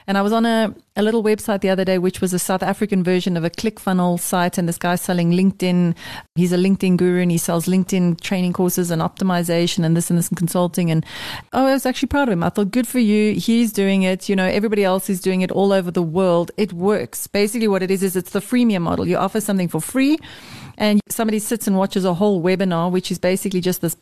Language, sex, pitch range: English, female, 175-210 Hz